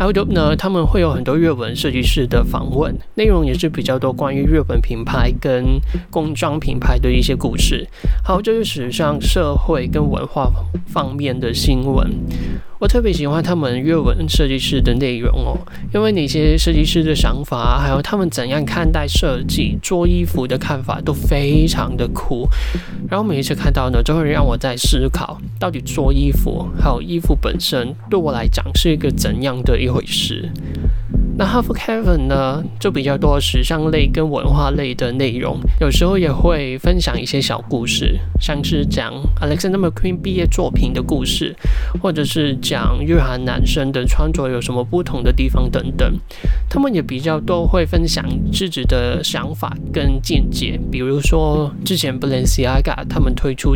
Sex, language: male, Chinese